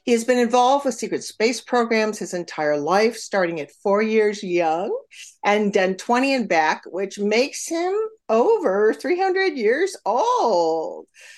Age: 50-69